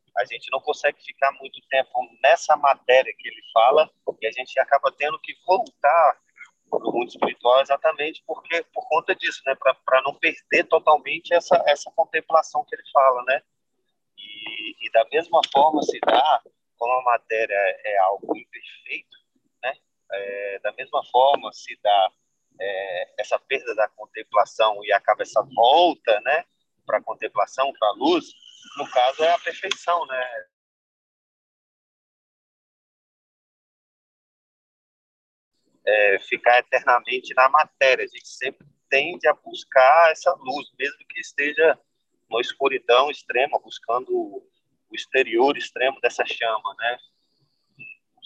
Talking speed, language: 135 wpm, Portuguese